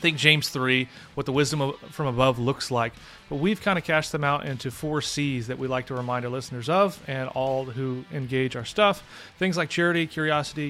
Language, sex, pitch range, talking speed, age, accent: English, male, 135-160 Hz, 215 wpm, 30-49, American